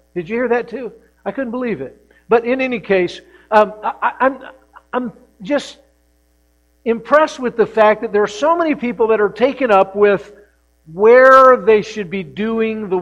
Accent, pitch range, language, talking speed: American, 185-240 Hz, English, 185 wpm